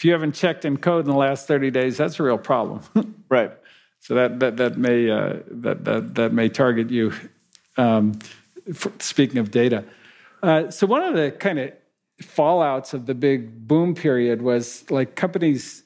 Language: English